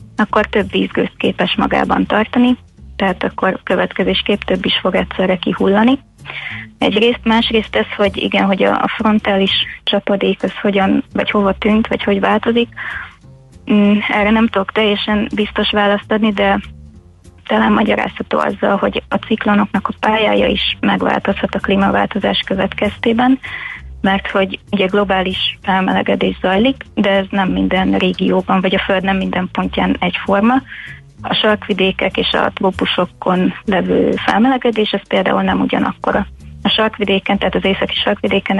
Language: Hungarian